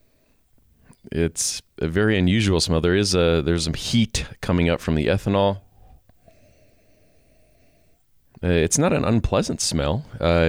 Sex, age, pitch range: male, 40-59, 80-100 Hz